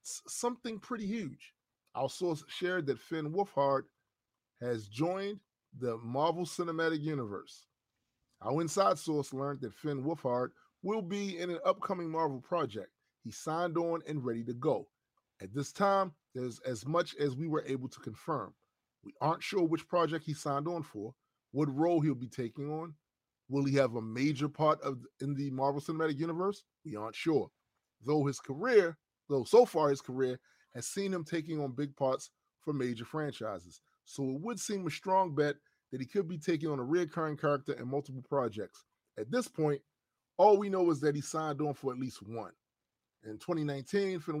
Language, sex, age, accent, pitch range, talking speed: English, male, 30-49, American, 130-165 Hz, 185 wpm